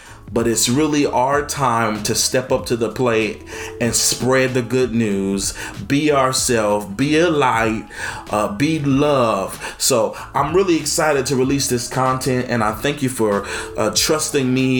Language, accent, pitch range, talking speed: English, American, 115-150 Hz, 160 wpm